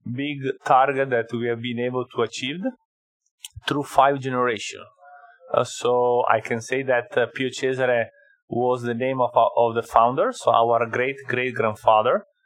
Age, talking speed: 30-49, 165 wpm